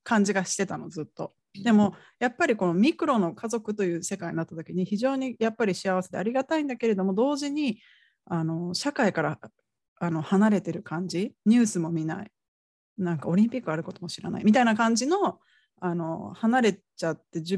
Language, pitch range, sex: Japanese, 170-225 Hz, female